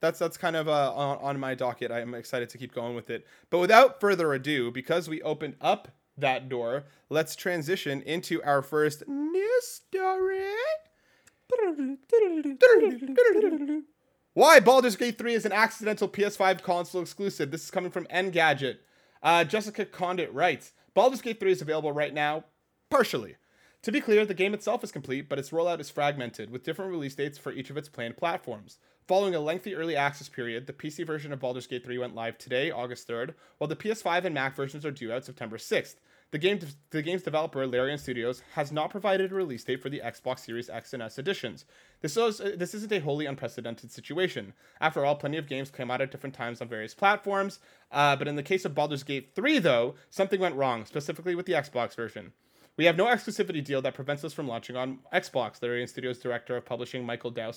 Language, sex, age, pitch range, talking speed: English, male, 30-49, 130-195 Hz, 200 wpm